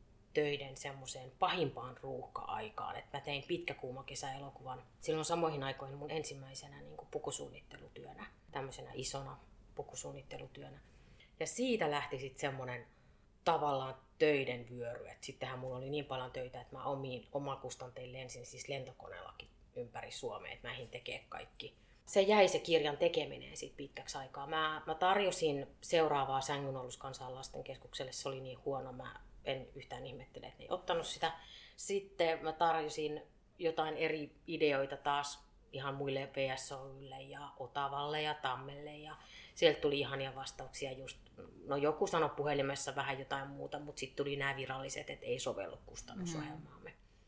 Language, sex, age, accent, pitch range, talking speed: Finnish, female, 30-49, native, 135-160 Hz, 140 wpm